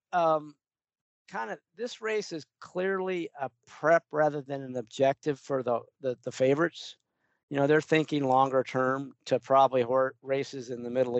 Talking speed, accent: 155 wpm, American